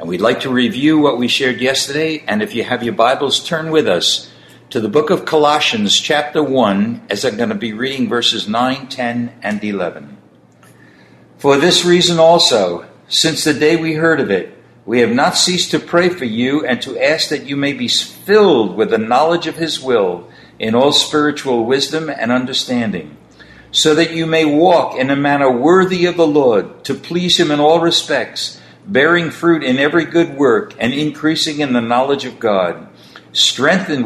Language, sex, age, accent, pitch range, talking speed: English, male, 60-79, American, 120-160 Hz, 190 wpm